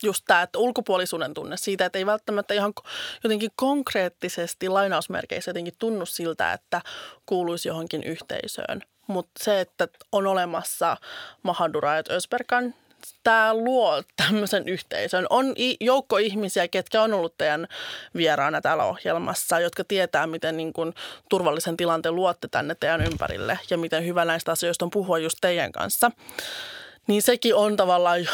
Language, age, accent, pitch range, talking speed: Finnish, 20-39, native, 170-215 Hz, 140 wpm